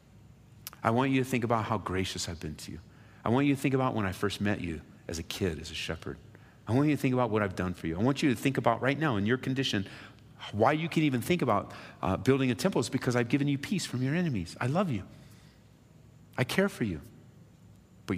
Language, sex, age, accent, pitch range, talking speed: English, male, 40-59, American, 90-130 Hz, 260 wpm